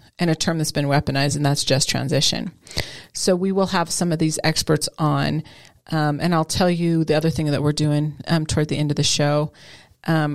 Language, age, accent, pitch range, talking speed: English, 40-59, American, 145-175 Hz, 220 wpm